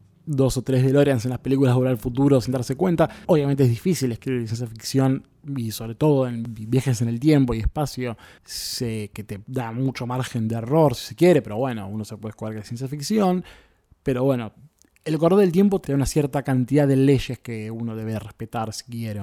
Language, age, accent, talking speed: Spanish, 20-39, Argentinian, 220 wpm